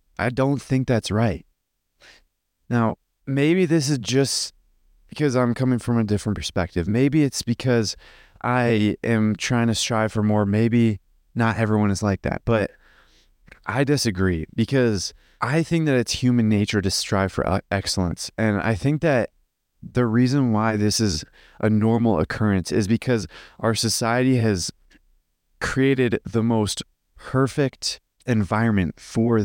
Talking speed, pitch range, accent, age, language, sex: 145 wpm, 95-125 Hz, American, 20-39, English, male